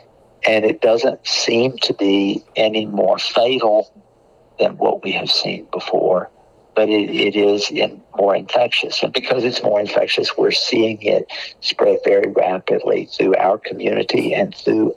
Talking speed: 150 wpm